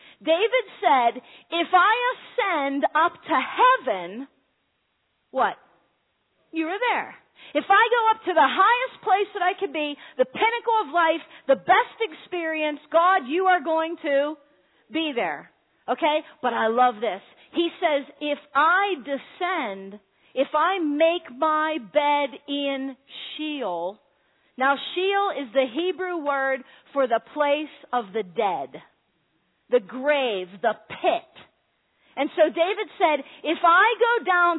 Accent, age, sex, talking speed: American, 40-59, female, 135 wpm